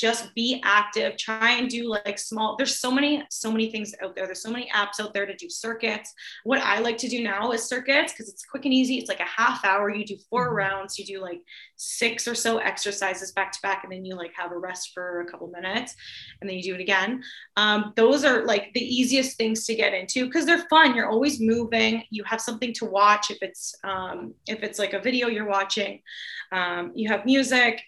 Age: 20-39